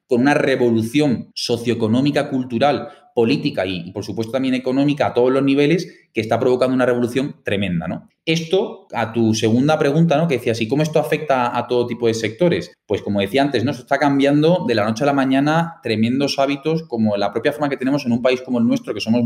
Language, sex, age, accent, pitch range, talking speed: Spanish, male, 20-39, Spanish, 115-140 Hz, 215 wpm